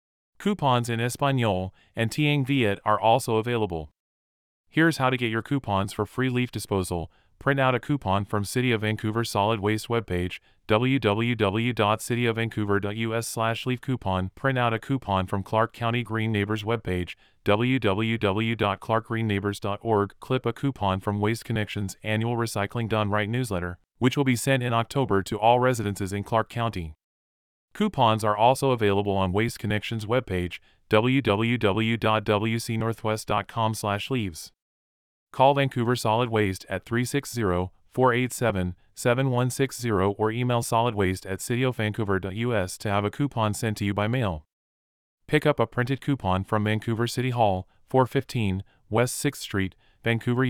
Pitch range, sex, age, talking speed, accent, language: 100-120 Hz, male, 30-49, 135 wpm, American, English